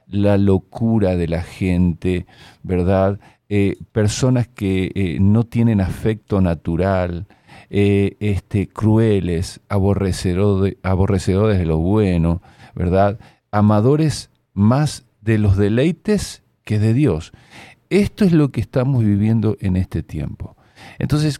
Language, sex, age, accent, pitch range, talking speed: Spanish, male, 40-59, Argentinian, 90-115 Hz, 110 wpm